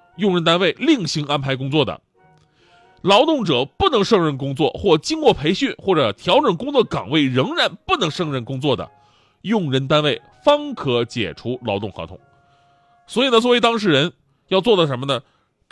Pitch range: 125-190 Hz